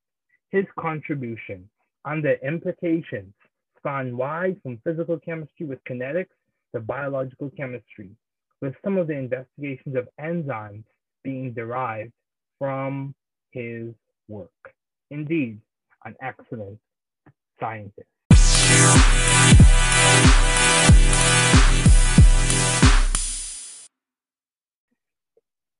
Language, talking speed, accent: English, 75 wpm, American